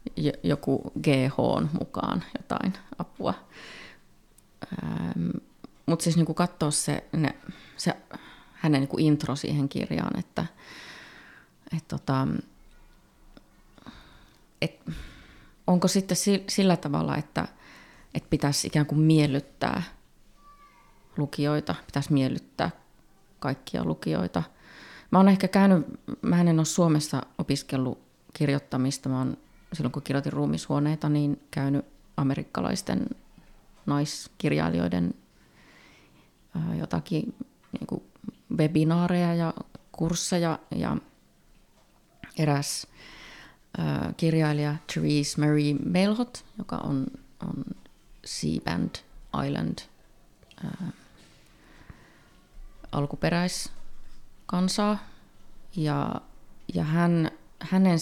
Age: 30-49